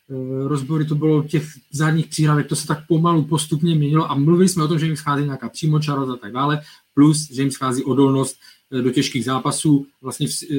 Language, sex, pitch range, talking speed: Czech, male, 130-155 Hz, 195 wpm